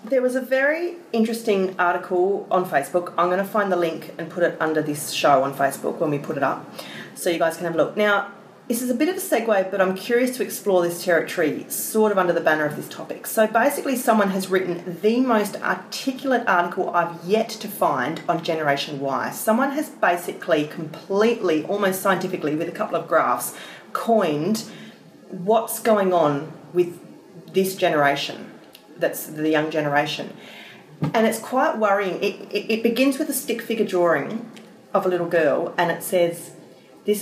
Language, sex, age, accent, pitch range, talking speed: English, female, 30-49, Australian, 170-220 Hz, 185 wpm